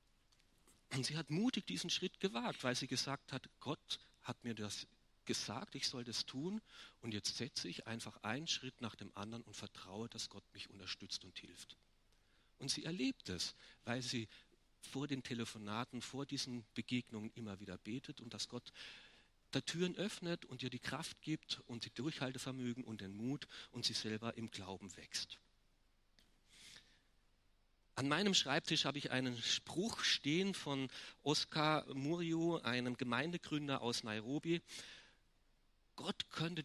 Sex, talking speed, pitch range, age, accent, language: male, 150 wpm, 115-150 Hz, 40-59, German, German